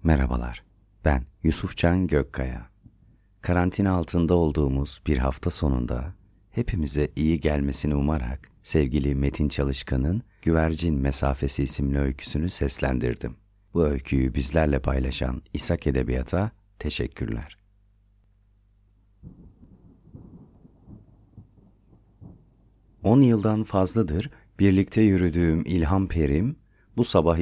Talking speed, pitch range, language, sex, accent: 85 wpm, 75-100 Hz, Turkish, male, native